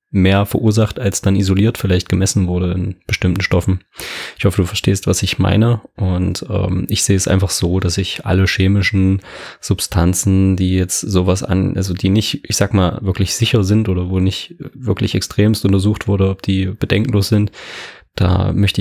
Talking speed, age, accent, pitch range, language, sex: 180 wpm, 20-39, German, 95-105 Hz, German, male